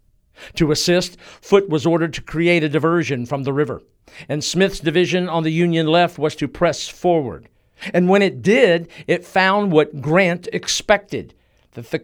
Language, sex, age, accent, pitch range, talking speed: English, male, 50-69, American, 135-175 Hz, 170 wpm